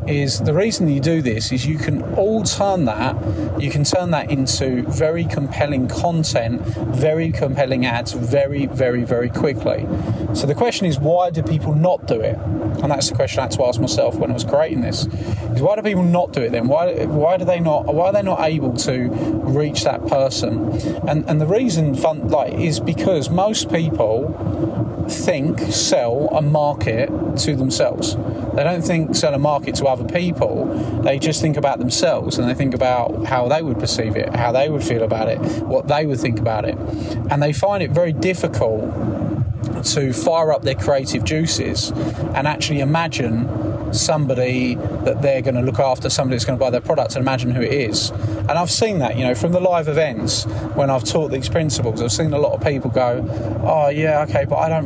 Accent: British